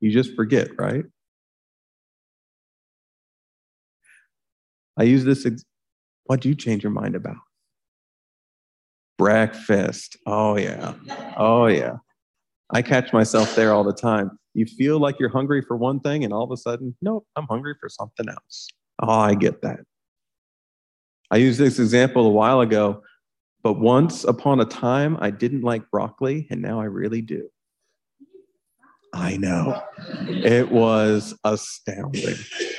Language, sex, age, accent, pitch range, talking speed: English, male, 40-59, American, 115-180 Hz, 135 wpm